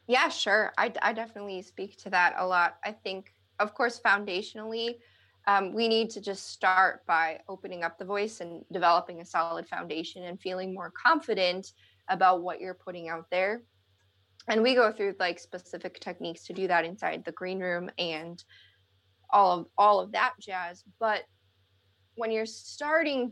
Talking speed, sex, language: 170 wpm, female, English